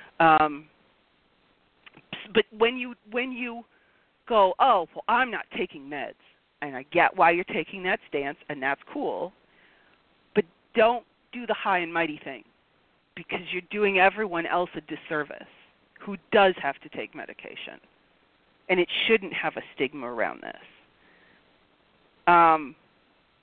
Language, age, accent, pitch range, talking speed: English, 40-59, American, 170-235 Hz, 140 wpm